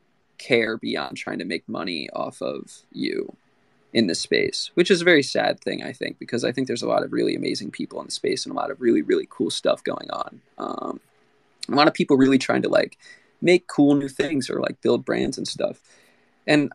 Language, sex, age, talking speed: English, male, 20-39, 225 wpm